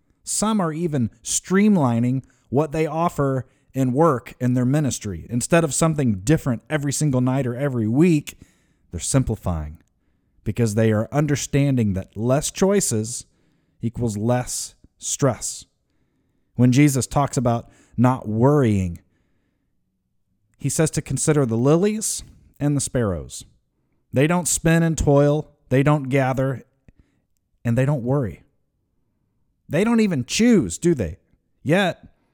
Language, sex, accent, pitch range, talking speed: English, male, American, 105-145 Hz, 125 wpm